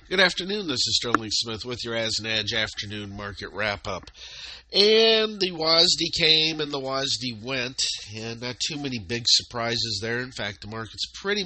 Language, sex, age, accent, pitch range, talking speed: English, male, 50-69, American, 105-145 Hz, 180 wpm